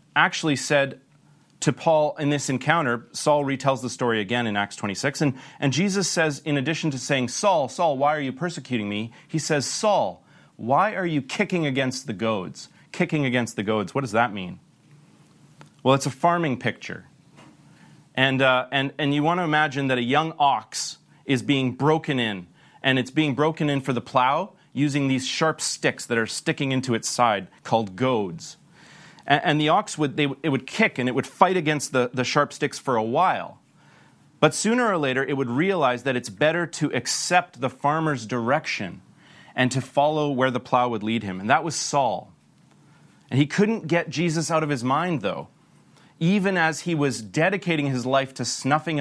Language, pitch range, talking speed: English, 125-155 Hz, 190 wpm